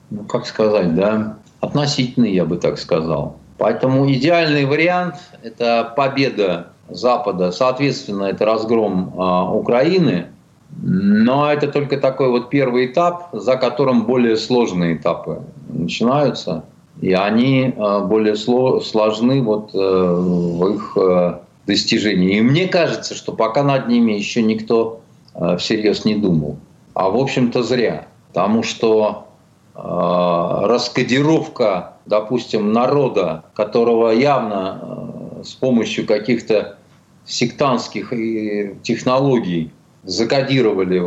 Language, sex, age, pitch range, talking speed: Russian, male, 40-59, 105-135 Hz, 100 wpm